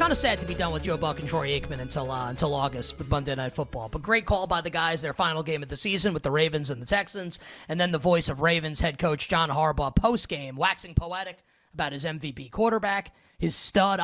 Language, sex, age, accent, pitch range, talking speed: English, male, 30-49, American, 150-195 Hz, 250 wpm